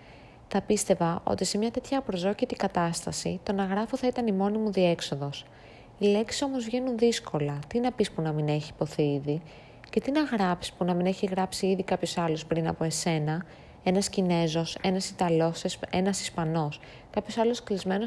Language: Greek